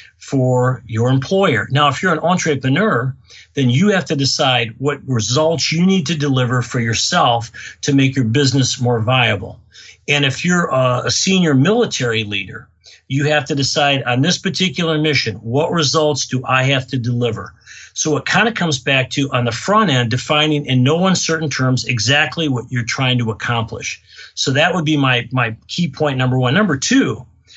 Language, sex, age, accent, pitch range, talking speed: English, male, 50-69, American, 125-155 Hz, 185 wpm